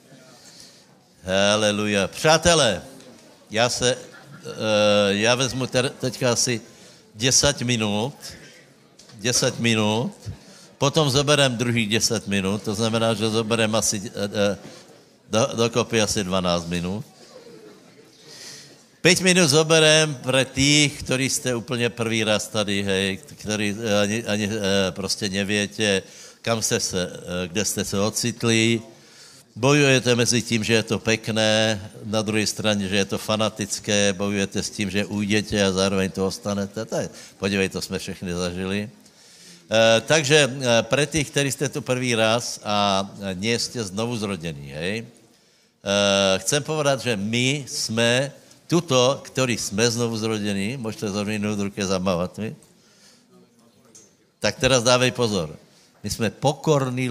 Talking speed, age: 120 wpm, 60-79